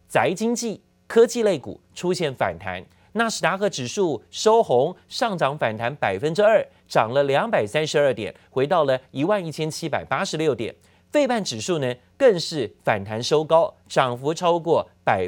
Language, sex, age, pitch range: Chinese, male, 30-49, 130-190 Hz